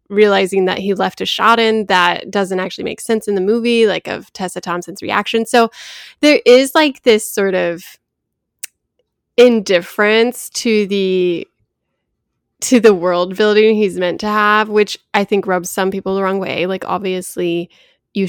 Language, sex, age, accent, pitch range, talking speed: English, female, 10-29, American, 185-225 Hz, 165 wpm